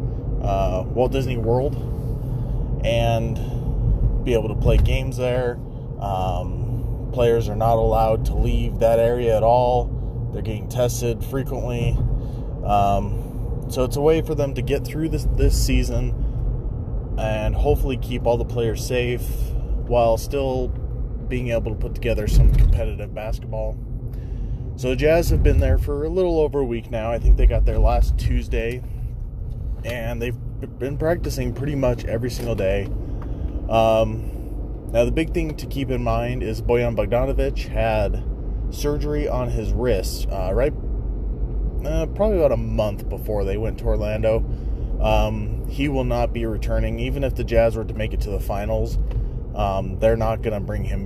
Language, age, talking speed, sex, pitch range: English, 20-39, 160 wpm, male, 110-125 Hz